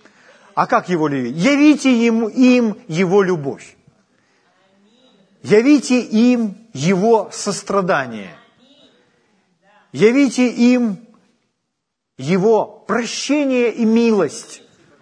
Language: Ukrainian